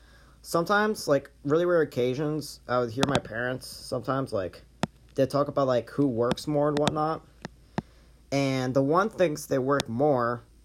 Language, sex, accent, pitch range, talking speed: English, male, American, 110-135 Hz, 160 wpm